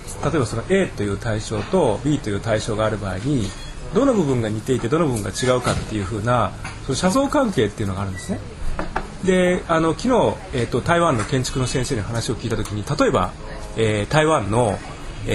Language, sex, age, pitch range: Japanese, male, 30-49, 110-170 Hz